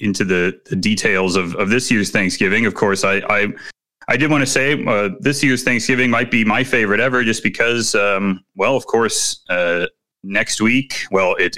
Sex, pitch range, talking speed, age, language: male, 100-130 Hz, 195 wpm, 30-49, English